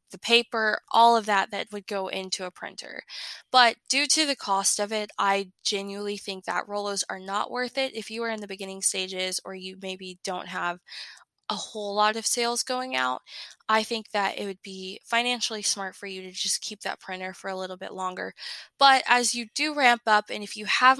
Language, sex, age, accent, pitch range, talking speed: English, female, 10-29, American, 195-235 Hz, 215 wpm